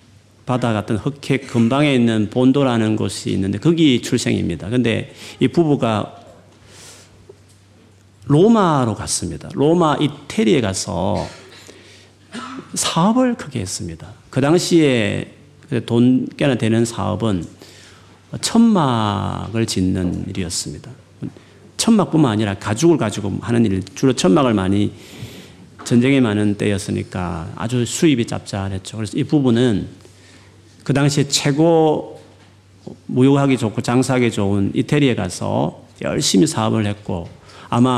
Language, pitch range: Korean, 100-135 Hz